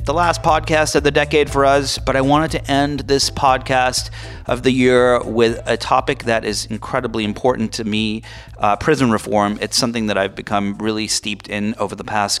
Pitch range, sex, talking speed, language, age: 105-125 Hz, male, 200 wpm, English, 30-49